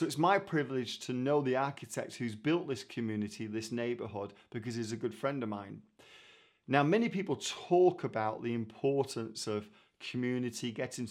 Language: English